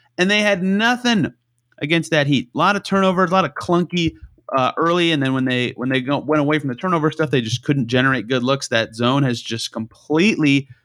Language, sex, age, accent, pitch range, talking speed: English, male, 30-49, American, 125-165 Hz, 225 wpm